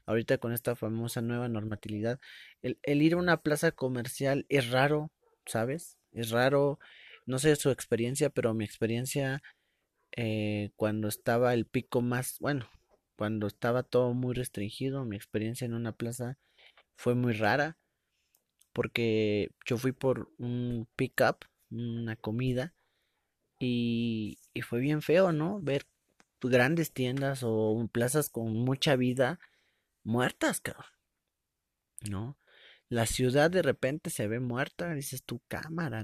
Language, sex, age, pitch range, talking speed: Spanish, male, 30-49, 115-140 Hz, 135 wpm